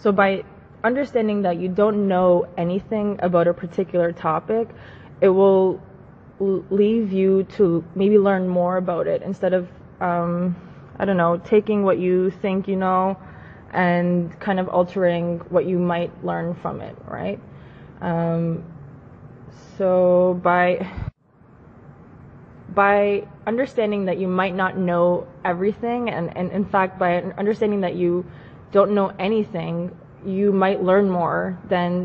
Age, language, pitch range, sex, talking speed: 20-39, English, 170-195 Hz, female, 135 wpm